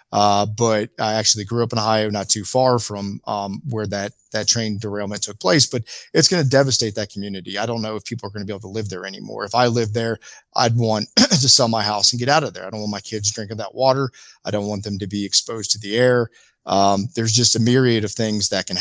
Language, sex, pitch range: English, male, 100-120 Hz